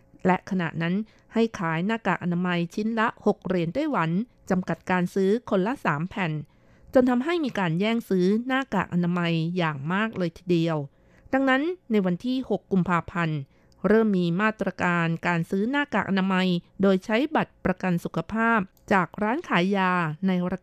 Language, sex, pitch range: Thai, female, 170-220 Hz